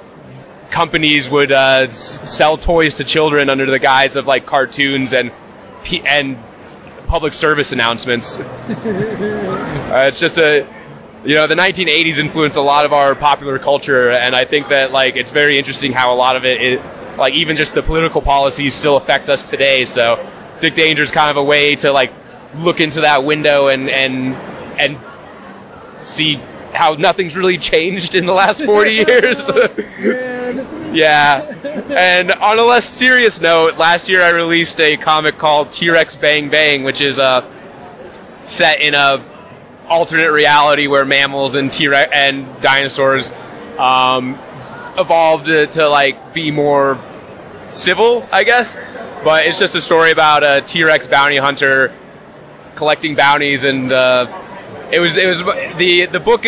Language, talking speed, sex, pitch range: English, 155 wpm, male, 135-170 Hz